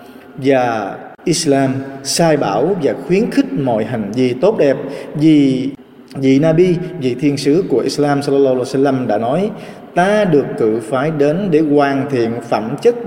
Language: Vietnamese